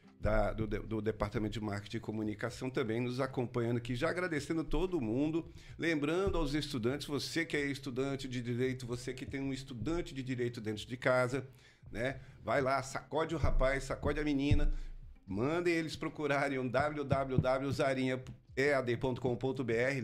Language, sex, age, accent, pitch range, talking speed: Portuguese, male, 50-69, Brazilian, 115-145 Hz, 145 wpm